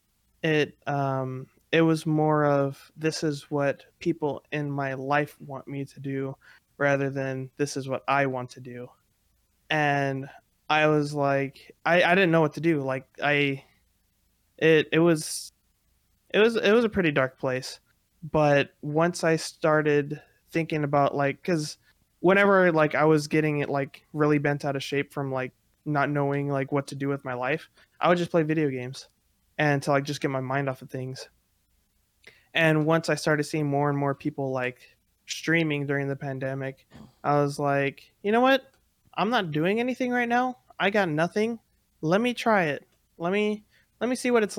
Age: 20-39